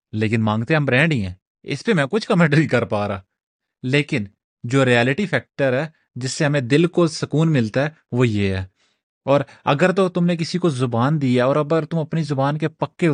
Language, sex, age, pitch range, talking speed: Urdu, male, 30-49, 130-180 Hz, 155 wpm